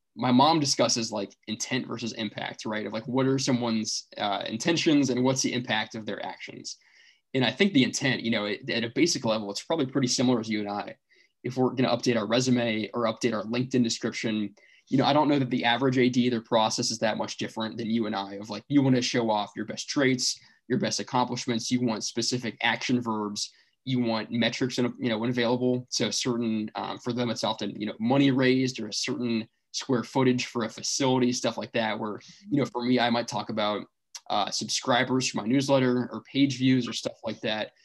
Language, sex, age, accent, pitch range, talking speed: English, male, 20-39, American, 115-130 Hz, 225 wpm